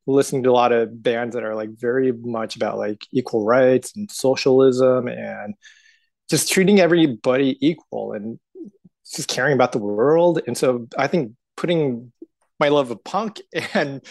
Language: English